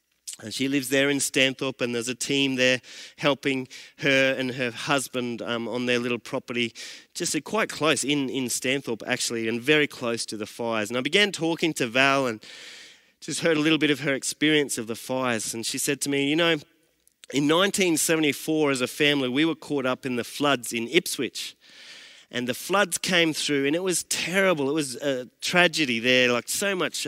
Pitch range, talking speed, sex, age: 125-155 Hz, 200 wpm, male, 30-49